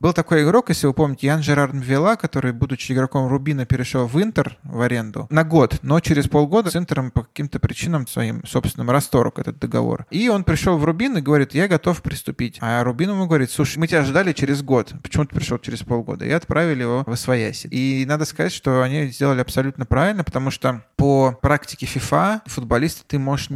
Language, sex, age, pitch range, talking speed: Russian, male, 20-39, 125-150 Hz, 200 wpm